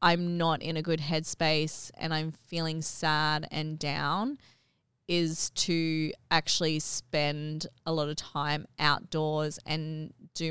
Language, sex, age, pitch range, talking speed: English, female, 20-39, 155-180 Hz, 130 wpm